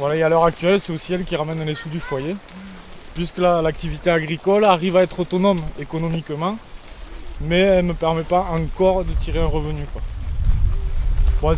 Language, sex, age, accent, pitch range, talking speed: French, male, 20-39, French, 155-190 Hz, 185 wpm